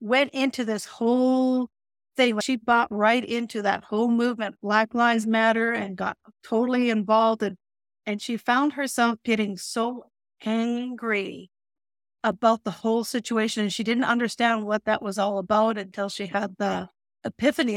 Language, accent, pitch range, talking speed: English, American, 210-245 Hz, 150 wpm